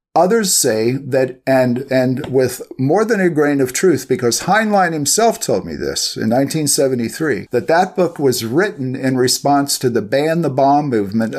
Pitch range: 125-155 Hz